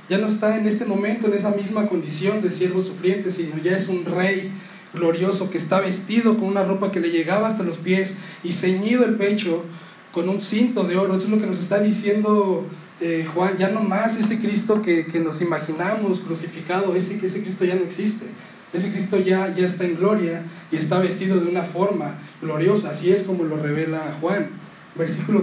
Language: Spanish